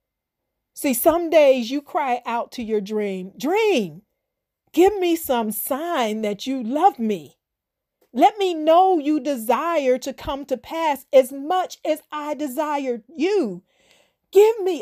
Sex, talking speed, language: female, 140 wpm, English